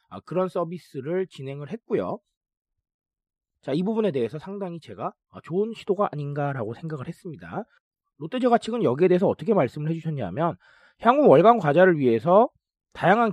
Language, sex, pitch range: Korean, male, 145-210 Hz